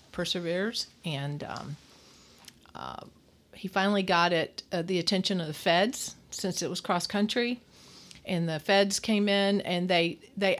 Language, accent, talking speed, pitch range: English, American, 155 wpm, 165-195 Hz